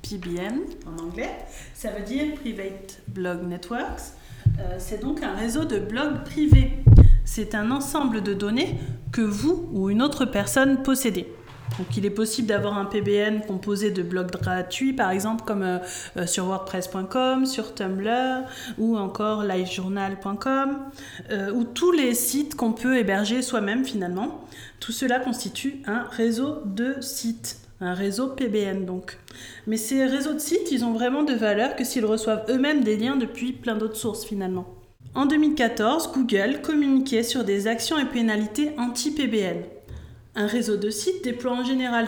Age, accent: 30-49, French